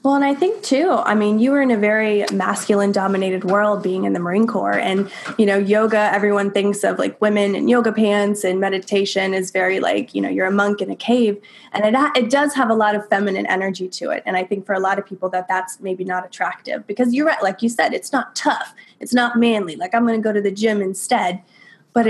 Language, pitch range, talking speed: English, 190-225 Hz, 250 wpm